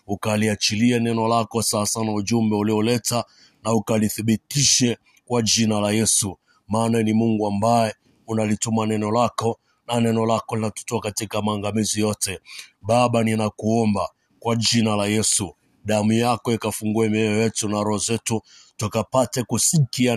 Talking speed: 125 wpm